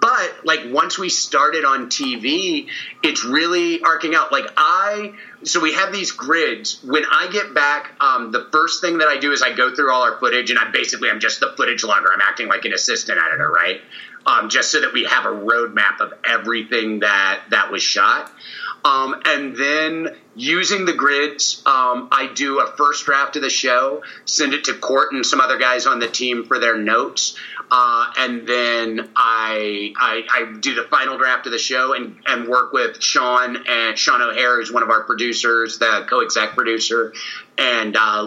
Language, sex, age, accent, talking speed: English, male, 30-49, American, 200 wpm